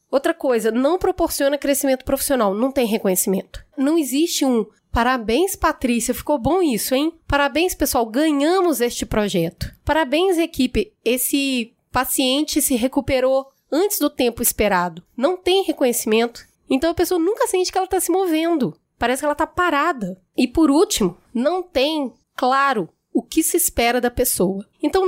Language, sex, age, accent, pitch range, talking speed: Portuguese, female, 20-39, Brazilian, 230-315 Hz, 155 wpm